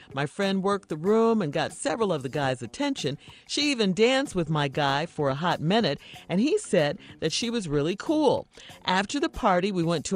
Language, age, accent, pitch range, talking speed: English, 50-69, American, 155-225 Hz, 215 wpm